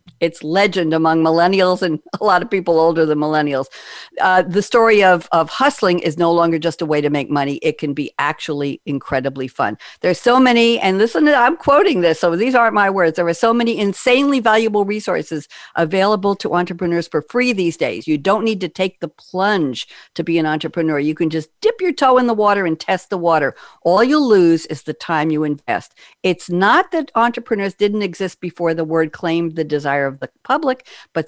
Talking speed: 205 wpm